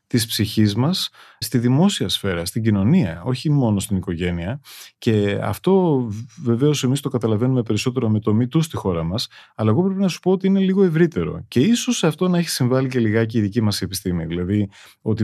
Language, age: Greek, 30-49